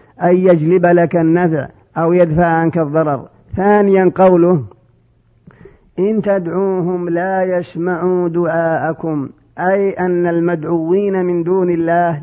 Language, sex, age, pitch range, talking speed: Arabic, male, 50-69, 165-185 Hz, 105 wpm